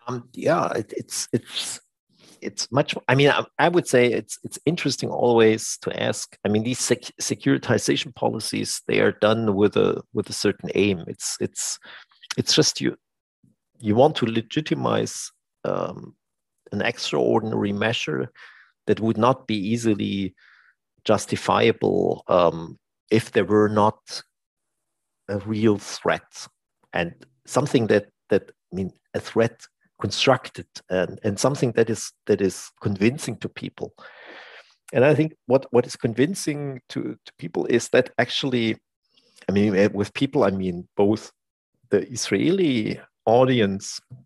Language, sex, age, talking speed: Danish, male, 50-69, 135 wpm